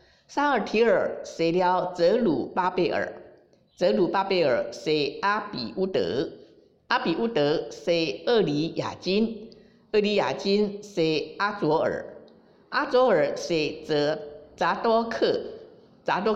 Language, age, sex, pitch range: Chinese, 50-69, female, 175-235 Hz